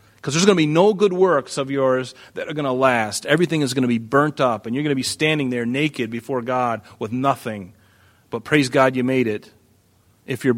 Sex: male